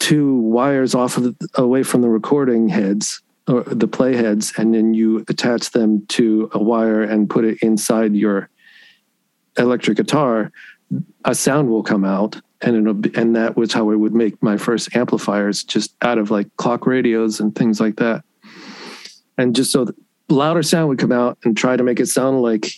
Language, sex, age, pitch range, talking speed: English, male, 40-59, 105-125 Hz, 190 wpm